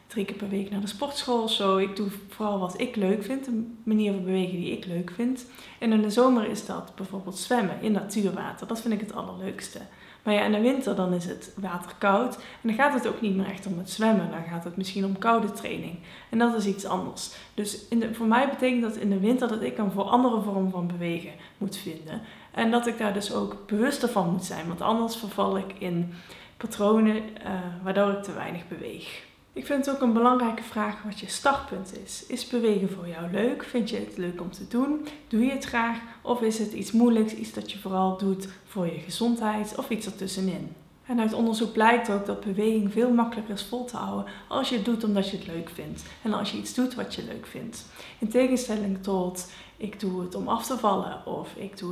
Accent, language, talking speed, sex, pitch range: Dutch, Dutch, 230 wpm, female, 195-235 Hz